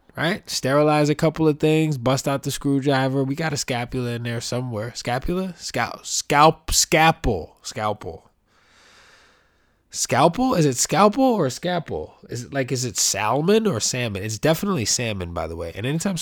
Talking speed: 165 wpm